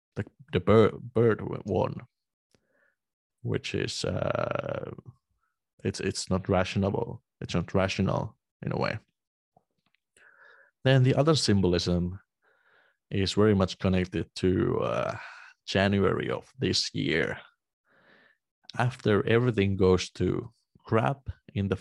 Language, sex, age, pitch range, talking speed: English, male, 30-49, 90-110 Hz, 105 wpm